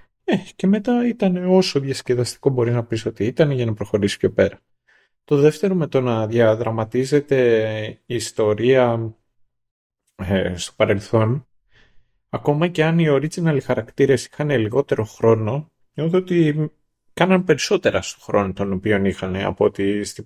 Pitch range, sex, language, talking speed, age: 110-145 Hz, male, Greek, 140 wpm, 30-49